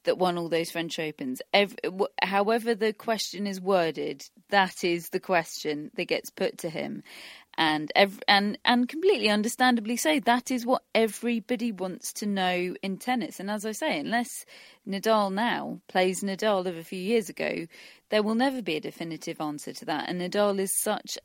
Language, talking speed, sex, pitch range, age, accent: English, 175 wpm, female, 175-215 Hz, 30-49, British